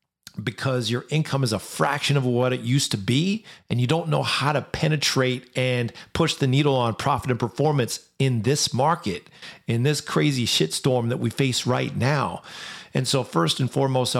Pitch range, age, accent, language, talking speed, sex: 115-140 Hz, 40-59, American, English, 190 wpm, male